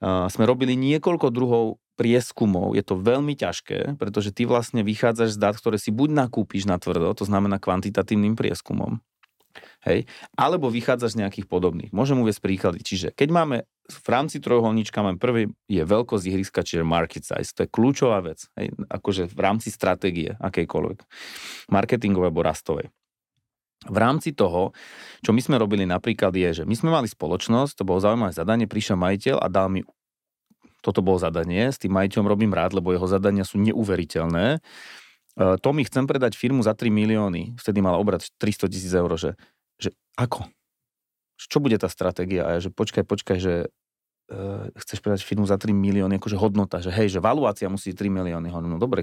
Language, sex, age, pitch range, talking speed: Slovak, male, 30-49, 90-110 Hz, 175 wpm